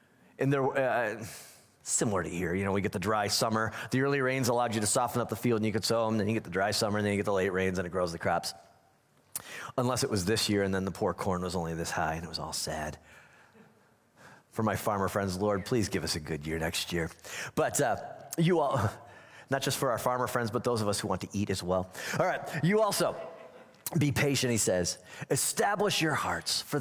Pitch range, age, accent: 100-155 Hz, 30-49, American